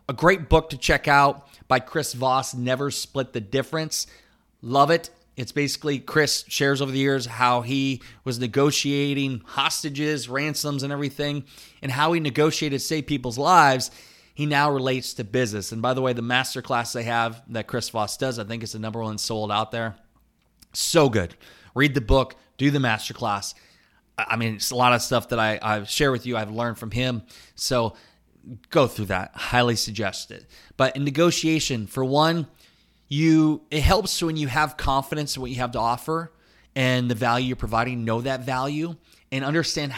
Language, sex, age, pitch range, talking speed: English, male, 20-39, 120-150 Hz, 185 wpm